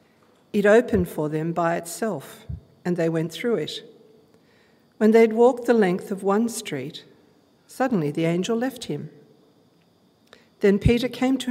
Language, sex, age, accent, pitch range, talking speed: English, female, 50-69, Australian, 160-210 Hz, 145 wpm